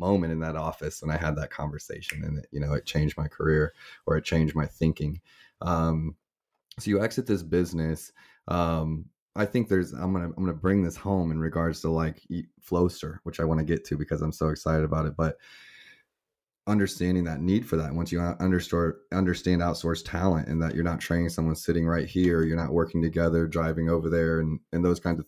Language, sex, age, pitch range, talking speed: English, male, 20-39, 80-90 Hz, 210 wpm